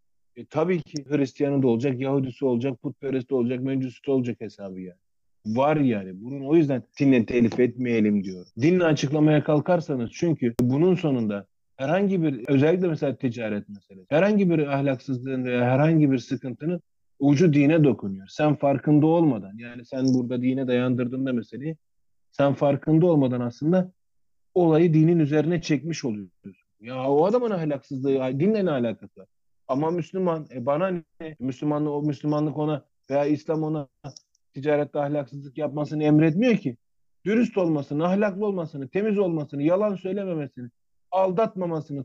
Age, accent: 40-59, native